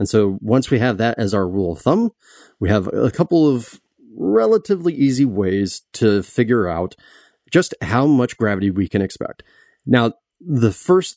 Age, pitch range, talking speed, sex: 30-49, 100-125 Hz, 170 wpm, male